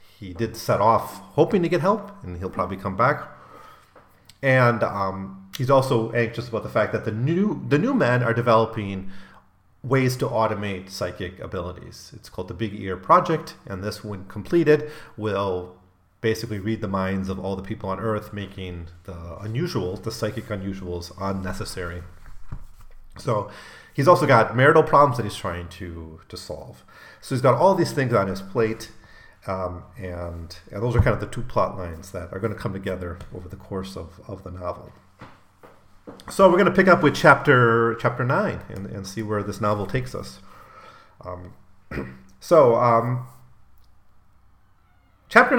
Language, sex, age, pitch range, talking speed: English, male, 30-49, 95-120 Hz, 170 wpm